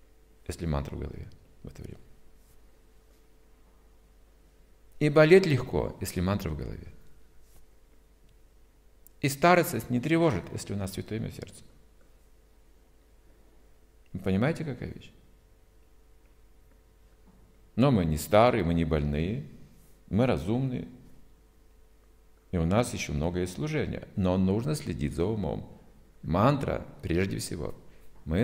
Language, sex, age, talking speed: Russian, male, 50-69, 110 wpm